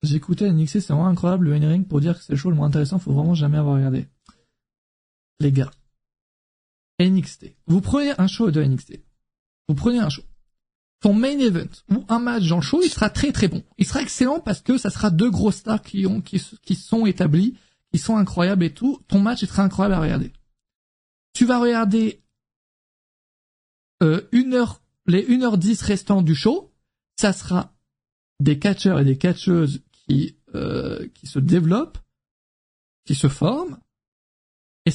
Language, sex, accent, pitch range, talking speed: French, male, French, 145-205 Hz, 175 wpm